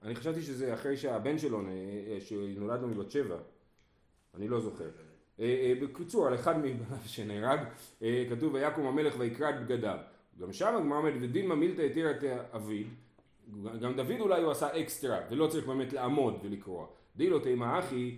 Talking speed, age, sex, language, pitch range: 175 wpm, 30-49, male, Hebrew, 120-160 Hz